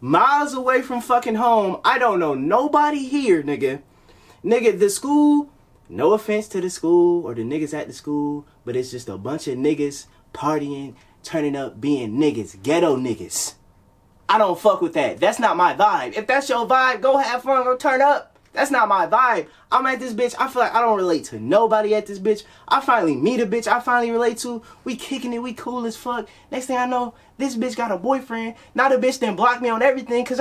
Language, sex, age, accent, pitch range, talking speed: English, male, 20-39, American, 195-280 Hz, 220 wpm